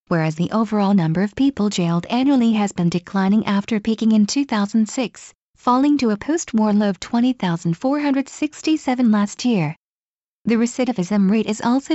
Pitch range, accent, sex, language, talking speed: 185-235 Hz, American, female, English, 145 wpm